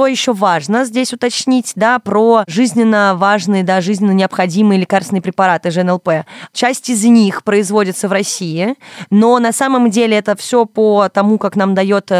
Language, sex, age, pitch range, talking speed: Russian, female, 20-39, 190-230 Hz, 145 wpm